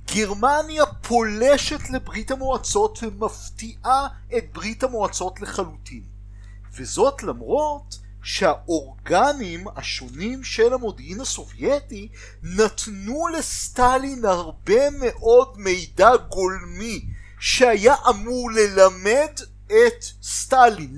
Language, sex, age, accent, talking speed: Hebrew, male, 50-69, native, 75 wpm